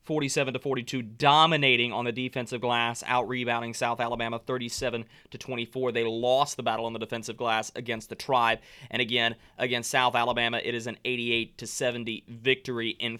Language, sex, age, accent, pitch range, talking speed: English, male, 20-39, American, 120-135 Hz, 175 wpm